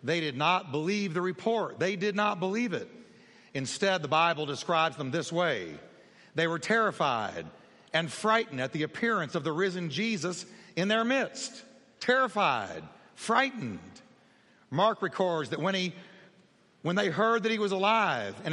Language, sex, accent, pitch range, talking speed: English, male, American, 170-215 Hz, 155 wpm